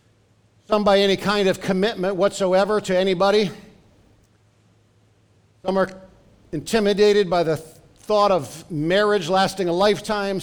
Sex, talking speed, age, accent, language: male, 115 wpm, 50-69, American, English